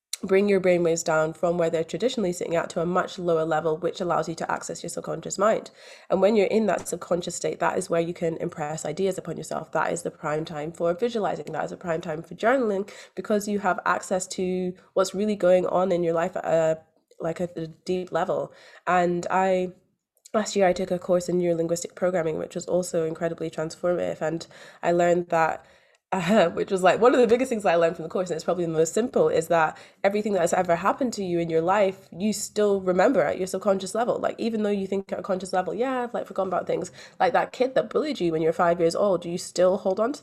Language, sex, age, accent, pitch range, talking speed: English, female, 20-39, British, 170-200 Hz, 240 wpm